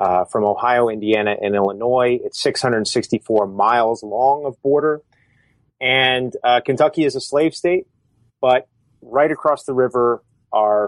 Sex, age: male, 30-49